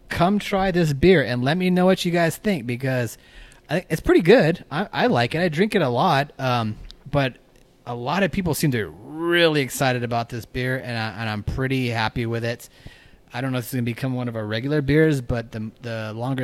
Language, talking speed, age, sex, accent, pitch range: English, 235 wpm, 30-49, male, American, 115-140 Hz